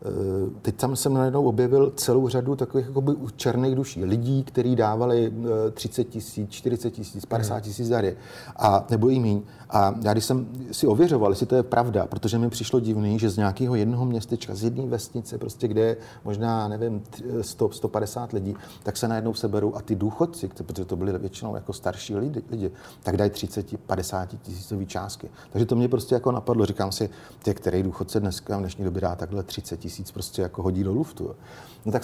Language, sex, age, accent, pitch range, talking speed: Czech, male, 40-59, native, 105-125 Hz, 180 wpm